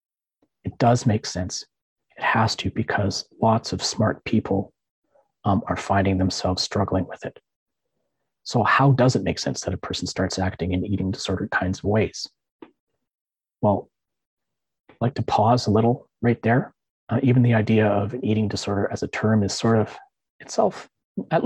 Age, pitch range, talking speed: 30-49, 100-125 Hz, 170 wpm